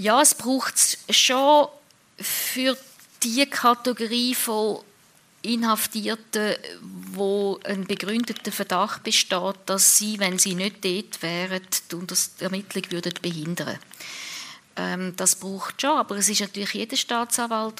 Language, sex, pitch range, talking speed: German, female, 190-225 Hz, 125 wpm